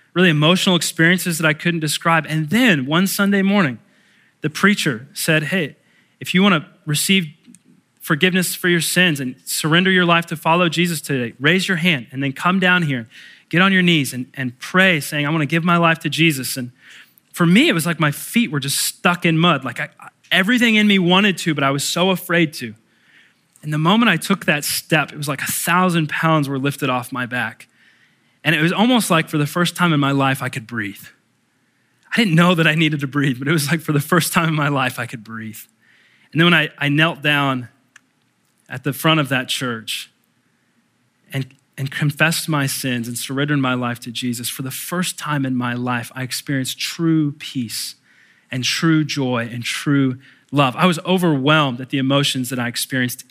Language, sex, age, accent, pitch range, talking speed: English, male, 20-39, American, 130-175 Hz, 210 wpm